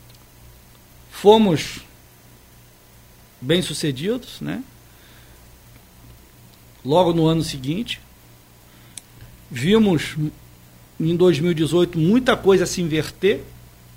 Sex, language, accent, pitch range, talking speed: male, Portuguese, Brazilian, 120-190 Hz, 60 wpm